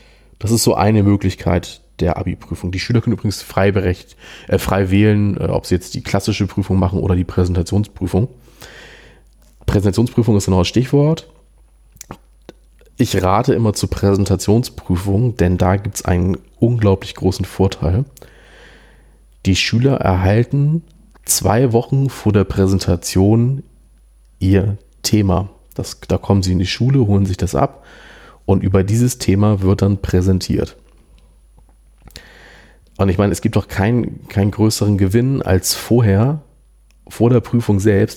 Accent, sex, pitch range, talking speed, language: German, male, 95-115 Hz, 140 wpm, German